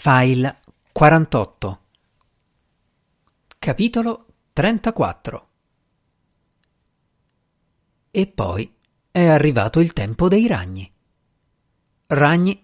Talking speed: 60 wpm